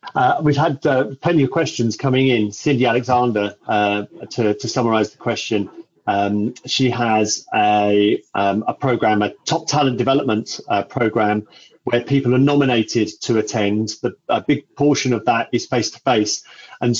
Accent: British